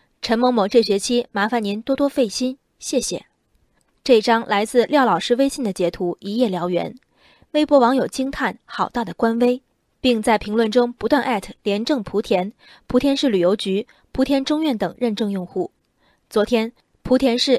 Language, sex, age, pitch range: Chinese, female, 20-39, 200-265 Hz